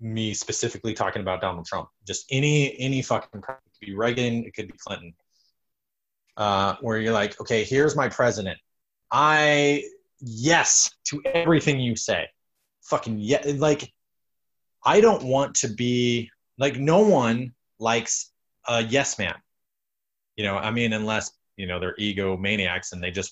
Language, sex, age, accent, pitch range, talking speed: English, male, 20-39, American, 110-140 Hz, 155 wpm